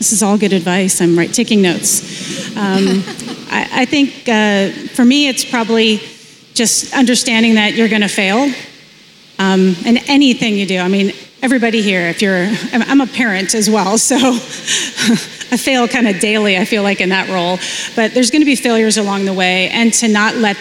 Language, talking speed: English, 190 wpm